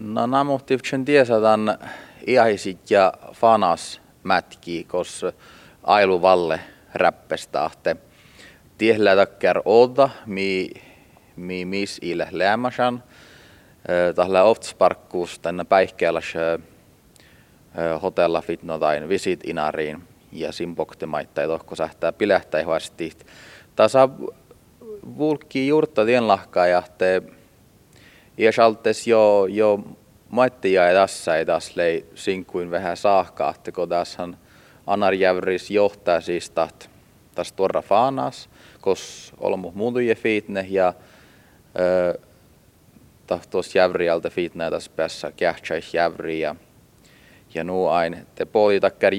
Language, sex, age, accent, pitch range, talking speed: Czech, male, 30-49, Finnish, 90-110 Hz, 85 wpm